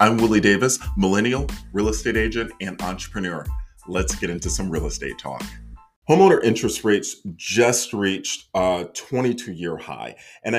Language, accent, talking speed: English, American, 140 wpm